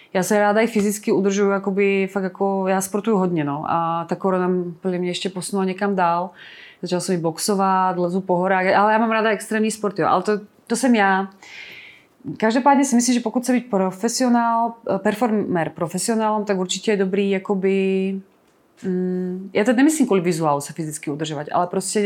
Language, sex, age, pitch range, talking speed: Czech, female, 30-49, 180-220 Hz, 175 wpm